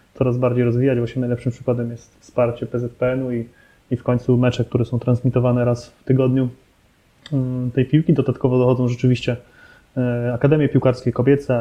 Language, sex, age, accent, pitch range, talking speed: Polish, male, 20-39, native, 125-135 Hz, 145 wpm